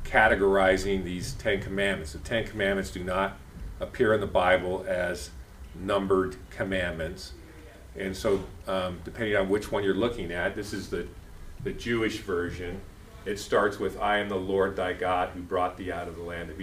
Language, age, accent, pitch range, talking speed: English, 40-59, American, 90-100 Hz, 175 wpm